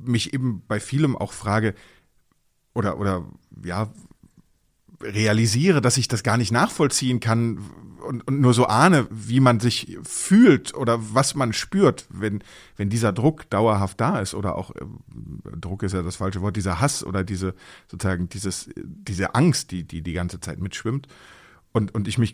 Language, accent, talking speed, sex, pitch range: German, German, 170 wpm, male, 100-130 Hz